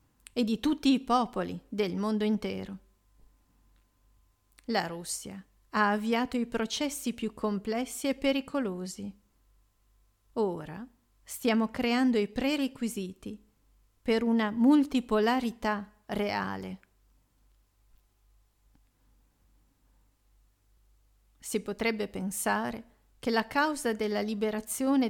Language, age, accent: Italian, 40-59, native